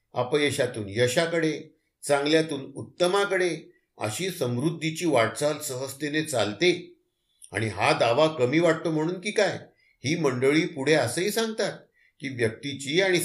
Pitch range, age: 120-165 Hz, 50-69